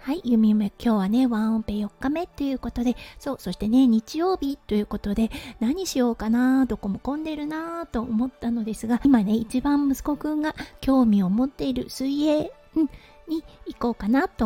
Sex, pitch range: female, 220-285 Hz